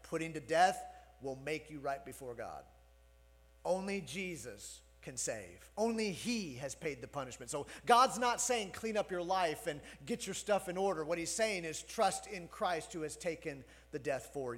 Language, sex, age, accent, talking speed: English, male, 40-59, American, 190 wpm